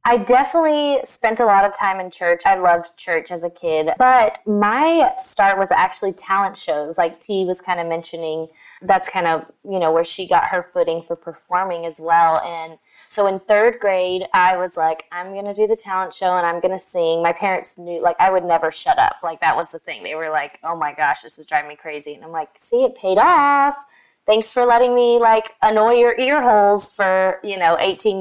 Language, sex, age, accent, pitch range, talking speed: English, female, 20-39, American, 170-215 Hz, 230 wpm